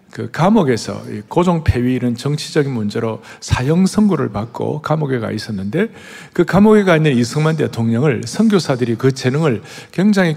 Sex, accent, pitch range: male, native, 120-190 Hz